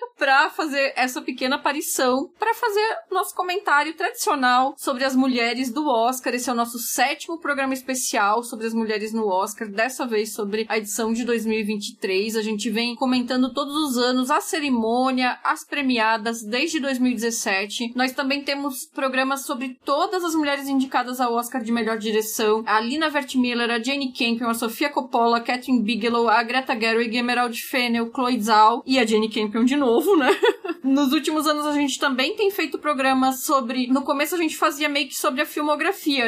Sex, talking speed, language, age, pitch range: female, 175 wpm, Portuguese, 20-39, 235-295 Hz